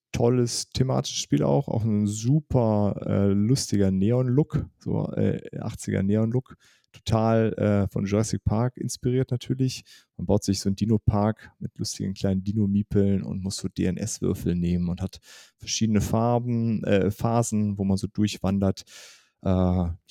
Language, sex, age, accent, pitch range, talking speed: German, male, 30-49, German, 95-120 Hz, 145 wpm